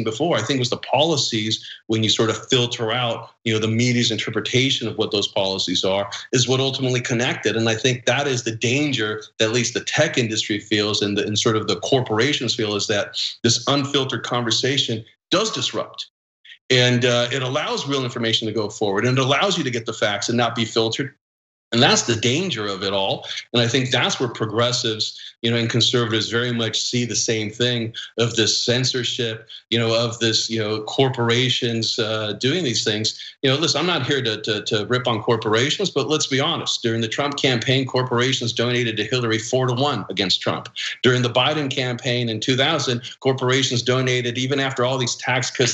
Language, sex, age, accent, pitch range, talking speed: English, male, 40-59, American, 110-130 Hz, 205 wpm